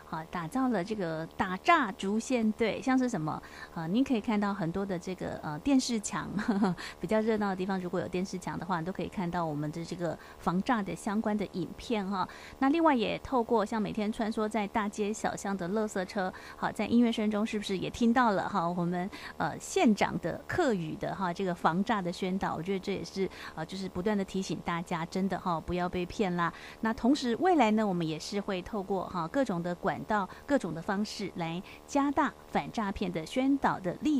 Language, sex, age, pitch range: Chinese, female, 30-49, 180-225 Hz